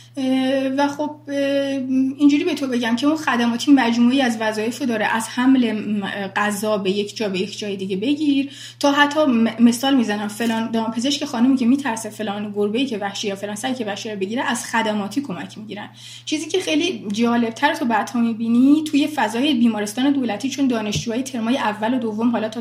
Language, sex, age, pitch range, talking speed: Persian, female, 30-49, 215-275 Hz, 185 wpm